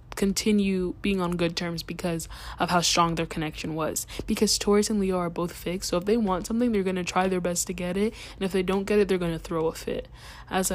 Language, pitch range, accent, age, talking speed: English, 175-200 Hz, American, 10-29, 255 wpm